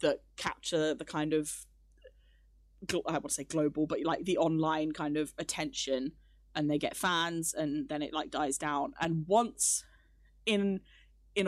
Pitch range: 150-180 Hz